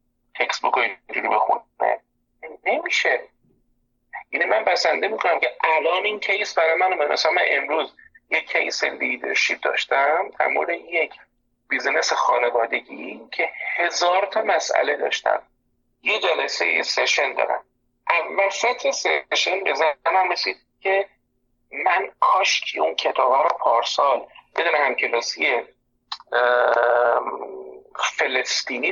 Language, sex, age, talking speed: Persian, male, 50-69, 120 wpm